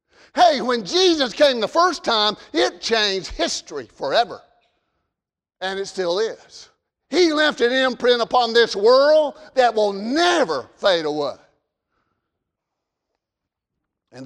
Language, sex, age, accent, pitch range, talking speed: English, male, 50-69, American, 220-310 Hz, 120 wpm